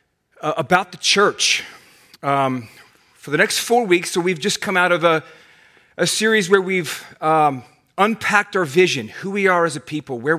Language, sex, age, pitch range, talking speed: English, male, 30-49, 155-195 Hz, 185 wpm